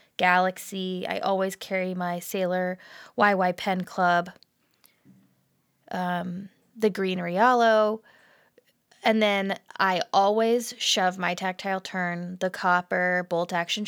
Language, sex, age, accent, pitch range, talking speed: English, female, 20-39, American, 170-195 Hz, 110 wpm